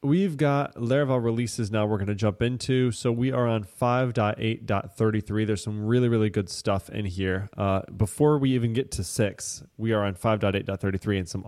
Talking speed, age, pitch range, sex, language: 190 wpm, 20-39, 100-125 Hz, male, English